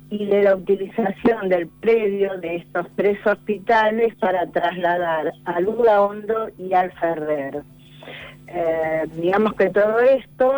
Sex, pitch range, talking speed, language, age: female, 170-215 Hz, 130 wpm, Spanish, 50-69